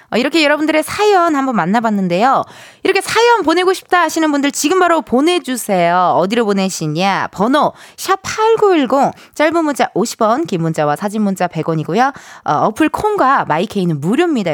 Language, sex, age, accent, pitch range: Korean, female, 20-39, native, 210-345 Hz